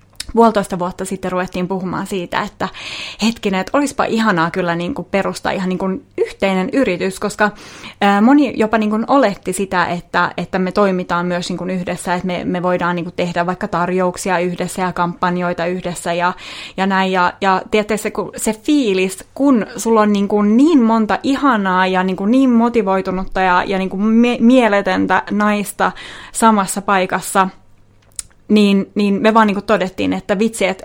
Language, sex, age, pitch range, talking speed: Finnish, female, 20-39, 185-210 Hz, 170 wpm